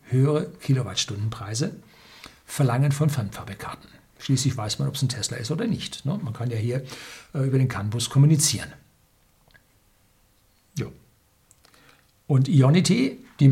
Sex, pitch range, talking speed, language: male, 130-155 Hz, 115 wpm, German